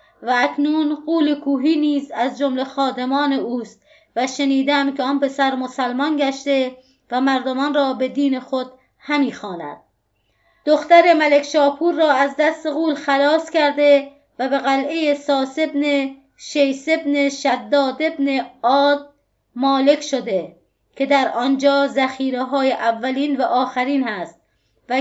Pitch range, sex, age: 255-290 Hz, female, 30-49